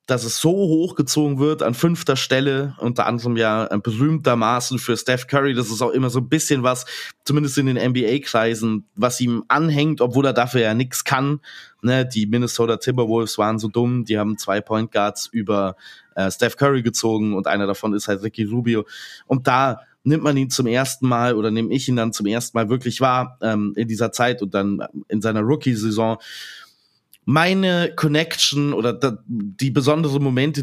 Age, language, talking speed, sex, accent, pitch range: 20-39, German, 180 wpm, male, German, 115-145 Hz